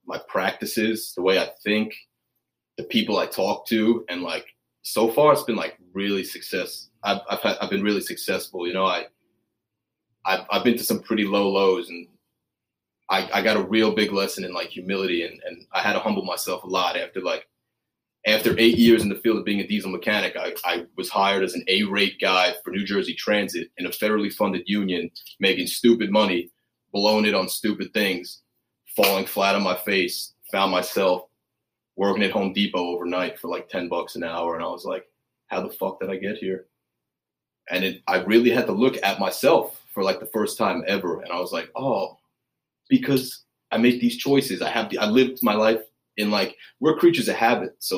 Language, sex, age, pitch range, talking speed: English, male, 30-49, 95-120 Hz, 205 wpm